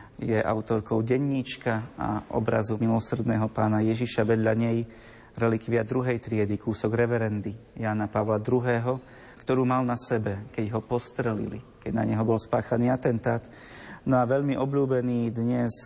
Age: 30-49